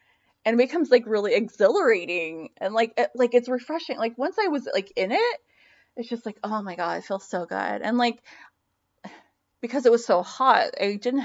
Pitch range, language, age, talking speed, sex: 200-295 Hz, English, 20-39, 205 wpm, female